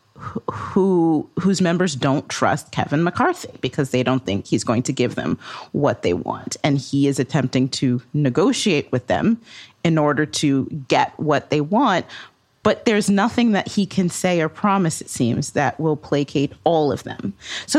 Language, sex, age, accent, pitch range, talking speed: English, female, 30-49, American, 135-175 Hz, 175 wpm